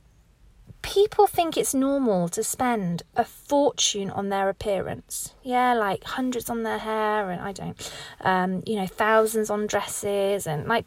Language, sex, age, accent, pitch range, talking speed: English, female, 30-49, British, 215-330 Hz, 155 wpm